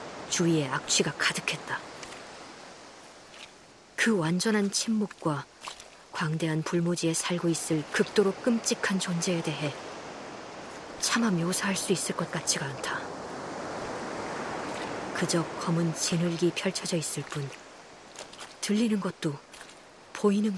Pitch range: 160-210 Hz